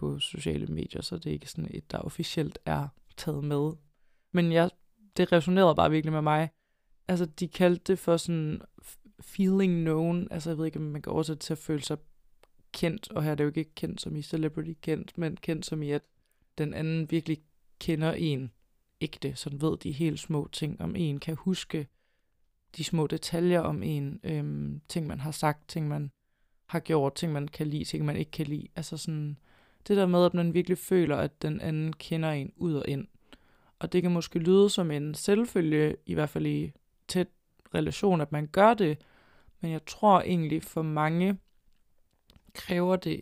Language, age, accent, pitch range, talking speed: Danish, 20-39, native, 150-175 Hz, 195 wpm